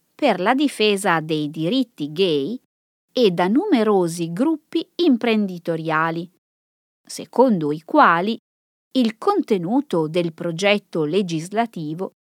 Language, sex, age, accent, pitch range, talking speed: Italian, female, 20-39, native, 170-245 Hz, 90 wpm